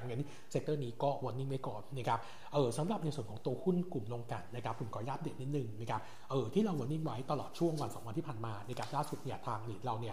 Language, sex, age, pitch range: Thai, male, 60-79, 120-145 Hz